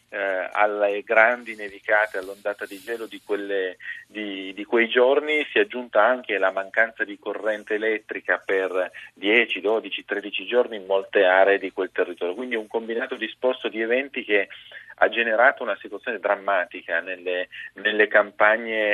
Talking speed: 150 wpm